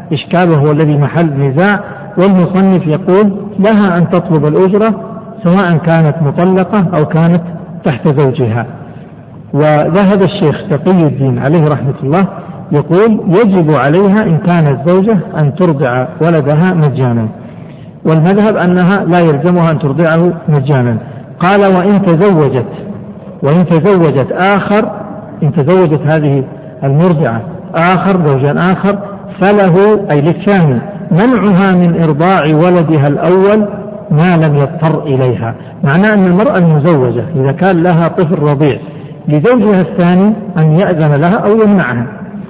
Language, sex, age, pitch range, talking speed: Arabic, male, 60-79, 150-190 Hz, 115 wpm